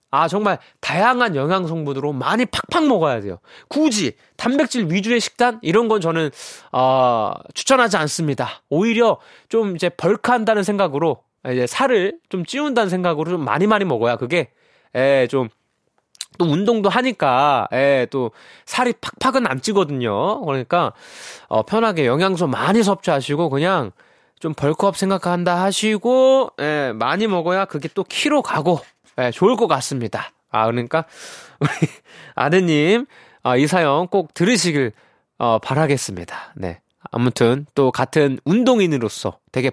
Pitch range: 140-220 Hz